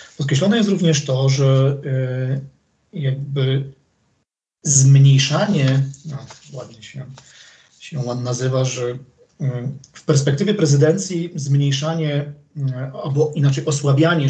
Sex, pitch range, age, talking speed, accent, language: male, 130-155 Hz, 40-59, 90 wpm, native, Polish